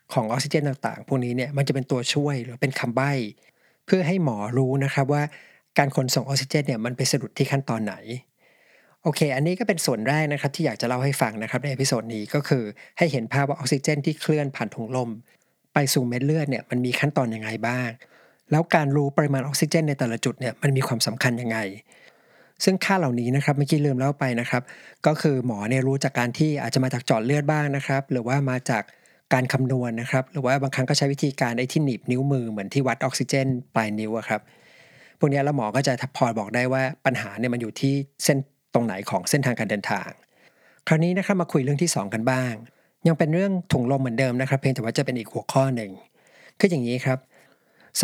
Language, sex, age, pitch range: Thai, male, 60-79, 125-150 Hz